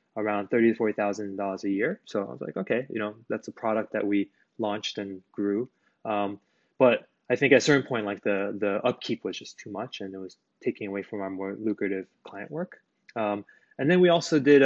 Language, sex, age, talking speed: English, male, 20-39, 220 wpm